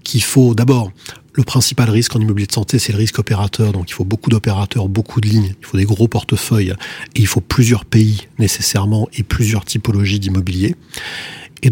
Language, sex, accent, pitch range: French, male, French, 100-125 Hz